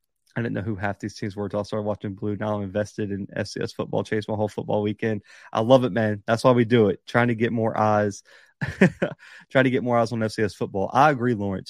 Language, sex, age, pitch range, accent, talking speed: English, male, 30-49, 105-130 Hz, American, 250 wpm